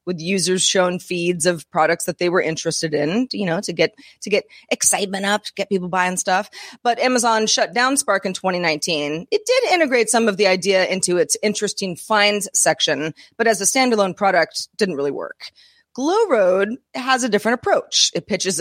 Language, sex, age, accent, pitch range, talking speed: English, female, 30-49, American, 180-235 Hz, 185 wpm